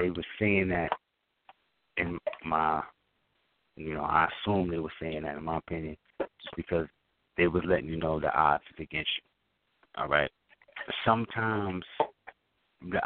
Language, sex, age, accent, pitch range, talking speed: English, male, 30-49, American, 80-95 Hz, 150 wpm